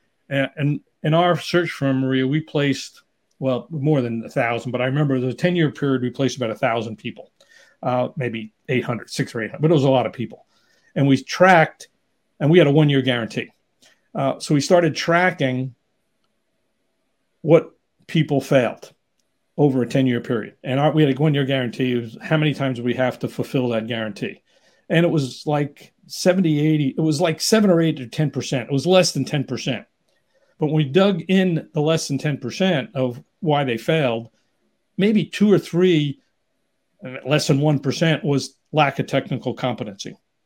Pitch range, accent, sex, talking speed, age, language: 130-160 Hz, American, male, 175 wpm, 50-69, English